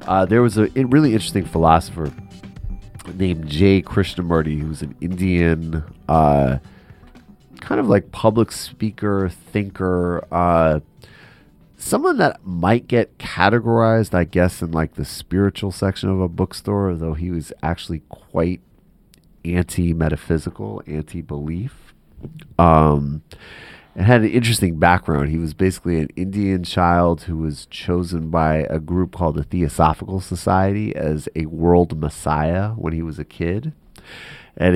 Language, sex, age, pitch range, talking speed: English, male, 30-49, 80-95 Hz, 130 wpm